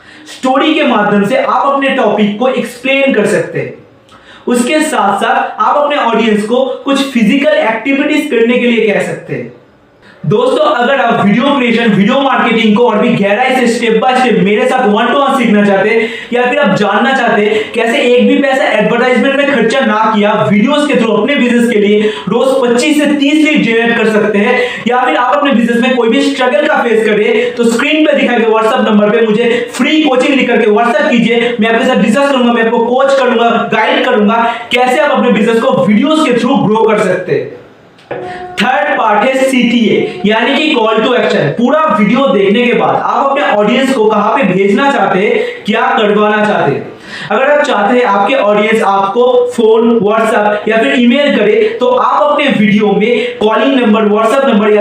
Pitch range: 215-270 Hz